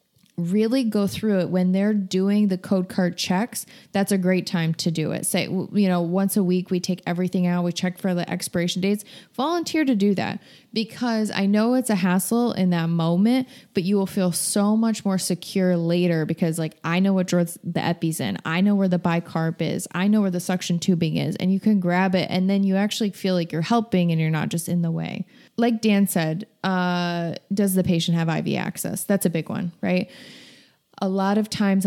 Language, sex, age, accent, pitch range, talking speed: English, female, 20-39, American, 175-200 Hz, 220 wpm